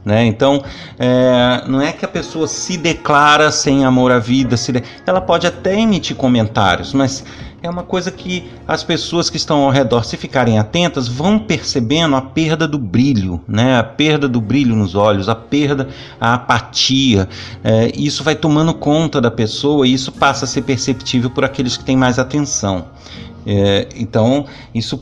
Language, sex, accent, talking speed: Portuguese, male, Brazilian, 175 wpm